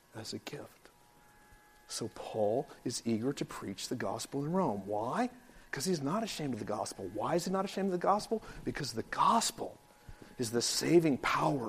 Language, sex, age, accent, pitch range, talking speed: English, male, 50-69, American, 110-155 Hz, 185 wpm